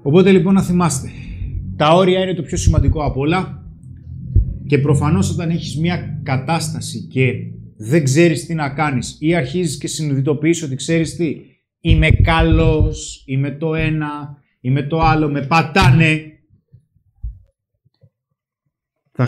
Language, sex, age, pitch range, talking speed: Greek, male, 30-49, 130-165 Hz, 130 wpm